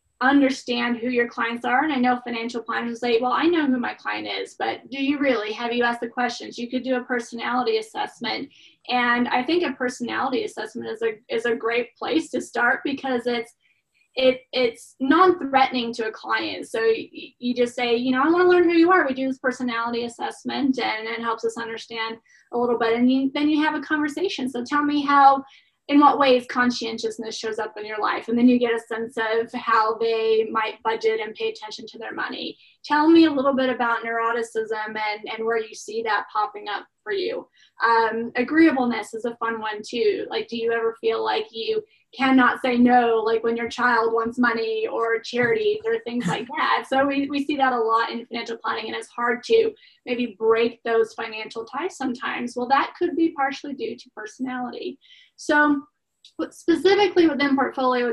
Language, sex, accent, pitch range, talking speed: English, female, American, 230-280 Hz, 200 wpm